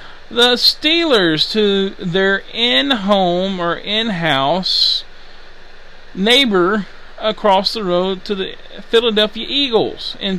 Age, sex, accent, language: 40-59, male, American, English